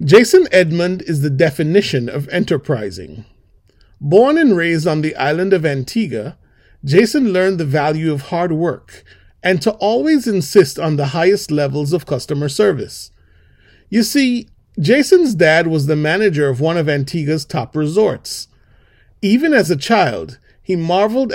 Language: English